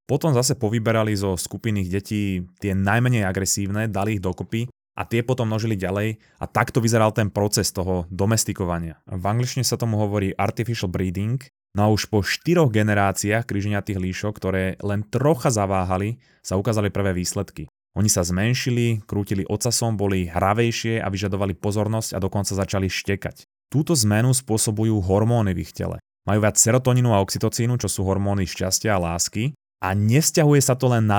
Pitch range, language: 95-115 Hz, Slovak